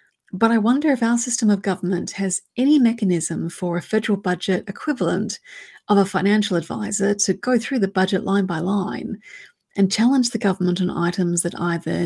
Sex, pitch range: female, 180-240 Hz